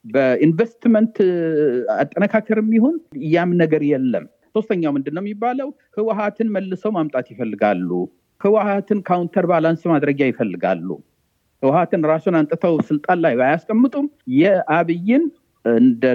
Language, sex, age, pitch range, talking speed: Amharic, male, 50-69, 150-230 Hz, 95 wpm